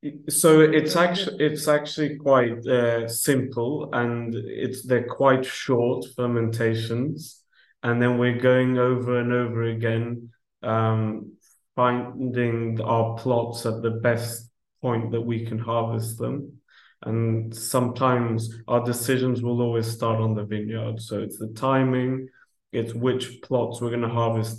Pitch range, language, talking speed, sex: 115-125 Hz, English, 135 wpm, male